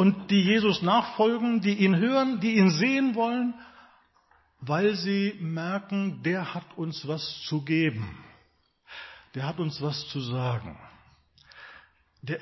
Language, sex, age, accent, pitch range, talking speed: German, male, 50-69, German, 135-195 Hz, 130 wpm